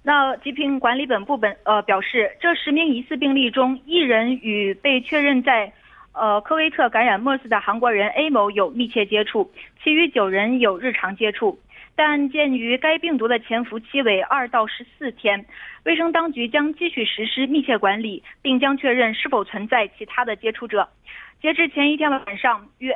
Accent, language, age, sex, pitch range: Chinese, Korean, 20-39, female, 220-295 Hz